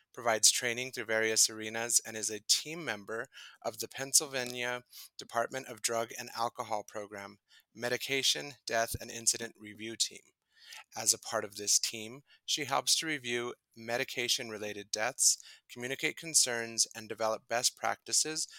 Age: 30-49